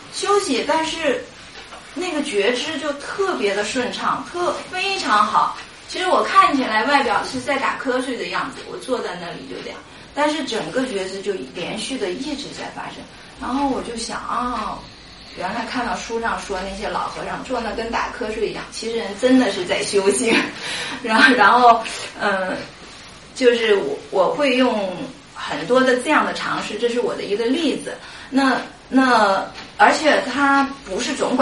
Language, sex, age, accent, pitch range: English, female, 30-49, Chinese, 225-290 Hz